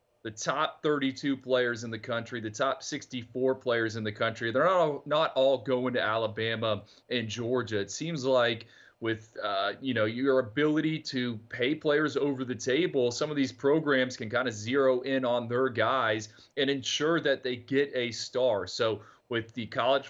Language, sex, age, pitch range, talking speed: English, male, 30-49, 115-145 Hz, 185 wpm